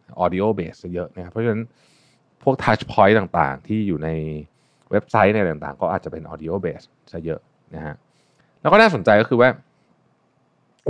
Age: 30-49